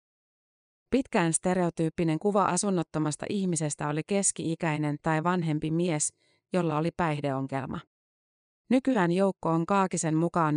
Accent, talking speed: native, 100 wpm